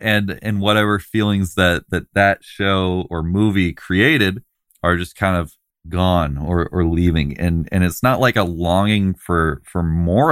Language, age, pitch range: English, 20-39, 85-110 Hz